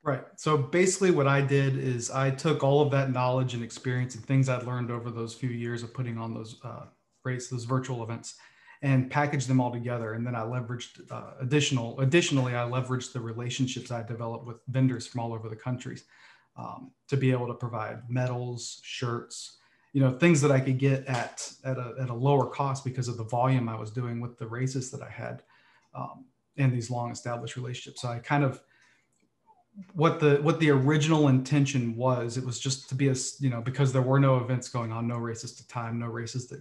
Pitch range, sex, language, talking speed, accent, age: 120-135 Hz, male, English, 215 wpm, American, 40-59